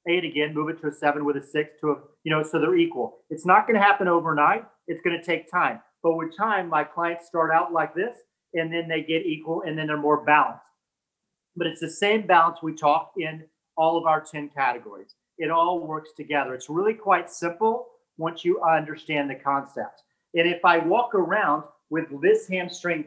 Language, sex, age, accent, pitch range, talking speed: English, male, 40-59, American, 155-190 Hz, 210 wpm